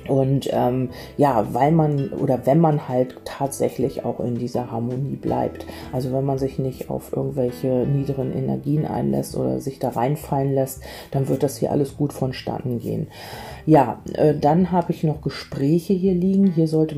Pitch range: 135-150 Hz